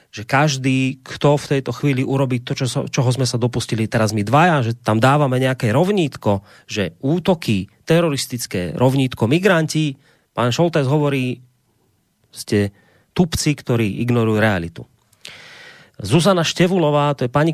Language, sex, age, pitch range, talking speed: Slovak, male, 30-49, 120-155 Hz, 135 wpm